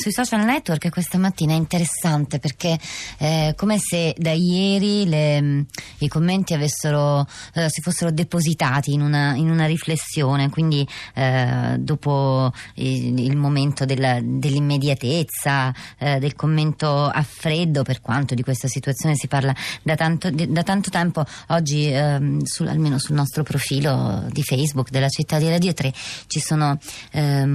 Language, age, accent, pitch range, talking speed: Italian, 20-39, native, 140-175 Hz, 150 wpm